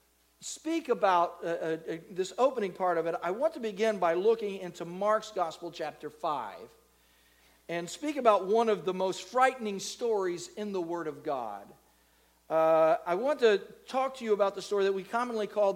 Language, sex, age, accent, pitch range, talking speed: English, male, 50-69, American, 170-220 Hz, 185 wpm